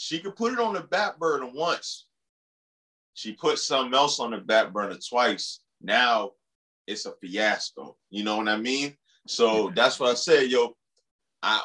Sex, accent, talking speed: male, American, 175 wpm